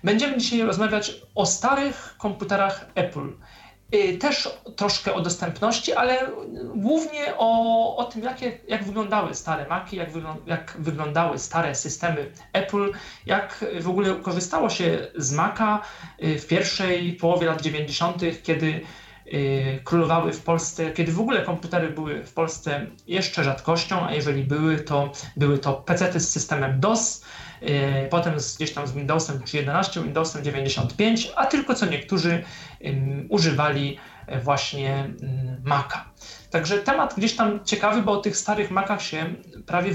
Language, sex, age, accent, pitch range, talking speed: Polish, male, 40-59, native, 150-205 Hz, 135 wpm